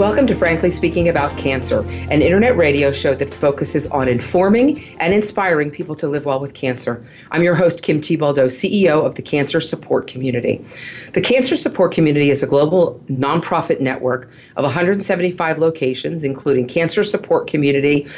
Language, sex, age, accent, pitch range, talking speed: English, female, 40-59, American, 135-175 Hz, 160 wpm